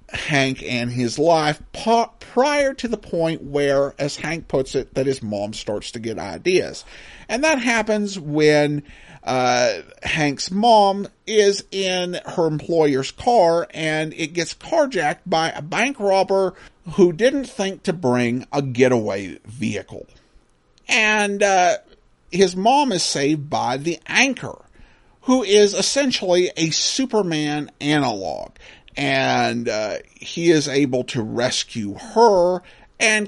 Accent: American